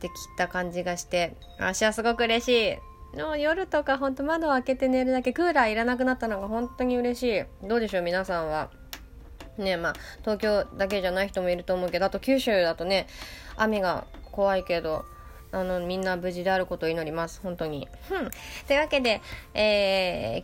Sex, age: female, 20-39